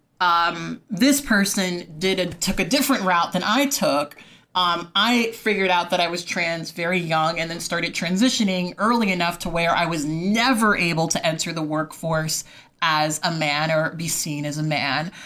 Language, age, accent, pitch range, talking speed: English, 30-49, American, 165-205 Hz, 185 wpm